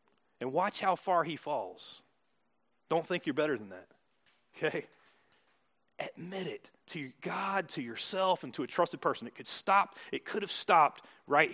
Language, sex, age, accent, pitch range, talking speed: English, male, 30-49, American, 160-210 Hz, 165 wpm